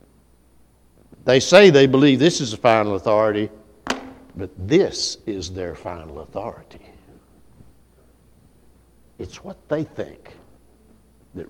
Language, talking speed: English, 105 wpm